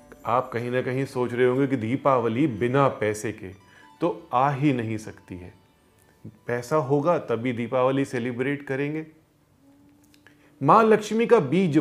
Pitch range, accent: 115-165 Hz, native